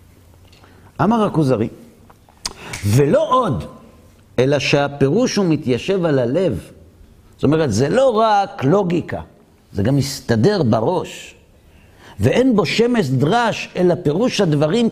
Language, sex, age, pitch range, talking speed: Hebrew, male, 50-69, 115-195 Hz, 110 wpm